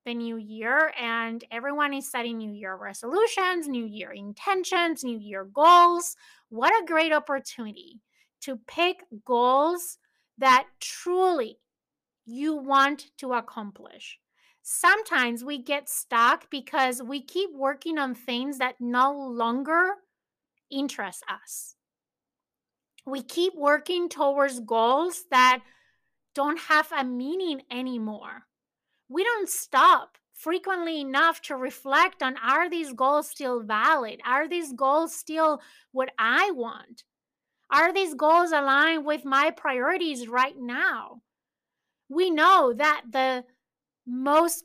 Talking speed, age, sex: 120 wpm, 30-49, female